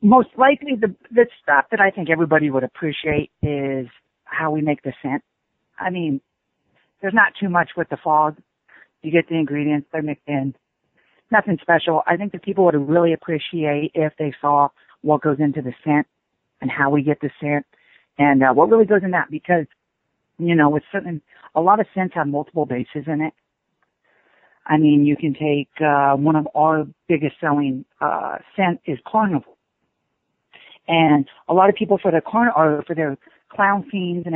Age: 50-69